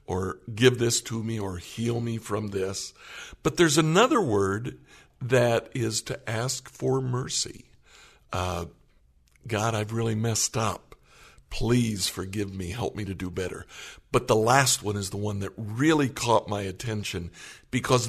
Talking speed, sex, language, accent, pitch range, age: 155 wpm, male, English, American, 105-130 Hz, 60-79